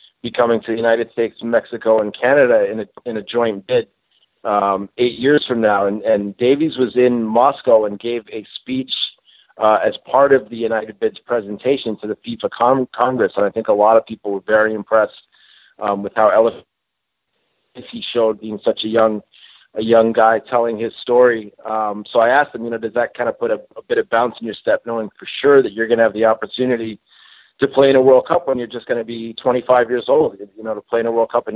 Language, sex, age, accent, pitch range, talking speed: English, male, 40-59, American, 110-130 Hz, 235 wpm